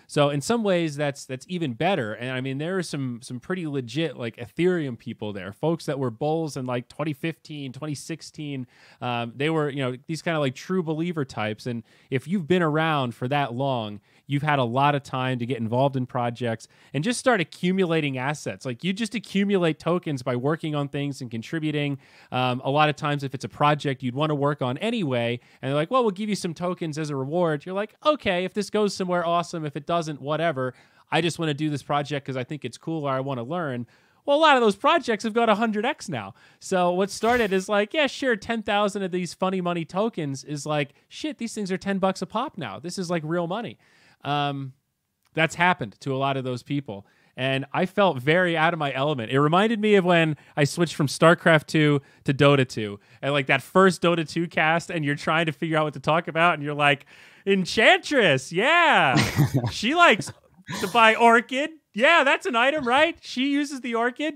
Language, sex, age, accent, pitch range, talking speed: English, male, 30-49, American, 135-190 Hz, 220 wpm